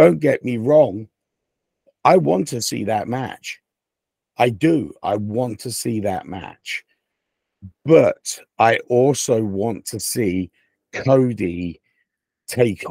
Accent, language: British, English